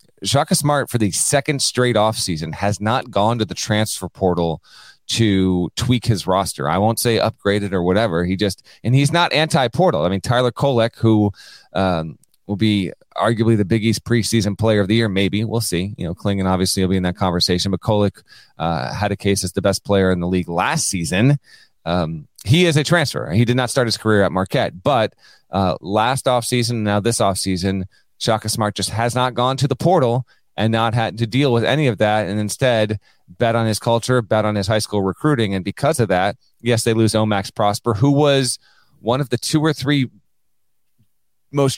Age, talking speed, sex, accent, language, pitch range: 30-49, 210 wpm, male, American, English, 95-125 Hz